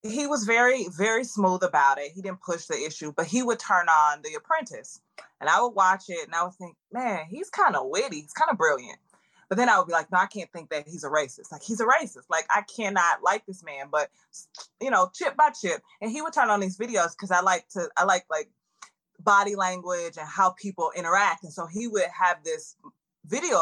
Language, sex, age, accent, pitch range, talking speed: English, female, 20-39, American, 170-235 Hz, 240 wpm